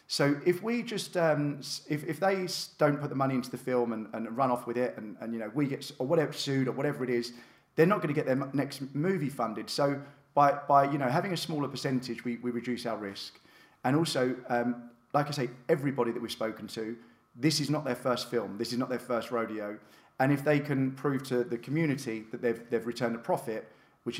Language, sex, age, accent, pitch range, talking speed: English, male, 30-49, British, 120-140 Hz, 230 wpm